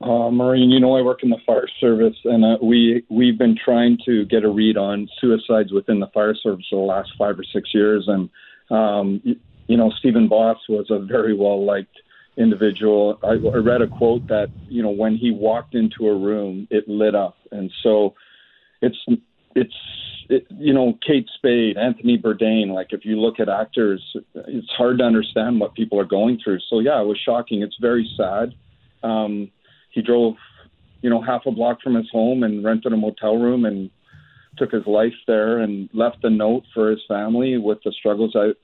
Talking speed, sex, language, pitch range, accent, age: 195 wpm, male, English, 105-120 Hz, American, 40-59